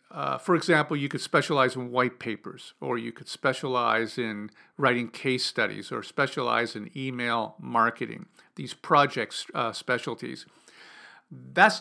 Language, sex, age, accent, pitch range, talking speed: English, male, 50-69, American, 130-185 Hz, 135 wpm